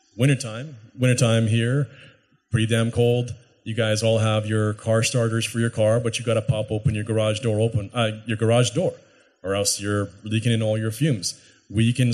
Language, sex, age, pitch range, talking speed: English, male, 30-49, 105-115 Hz, 200 wpm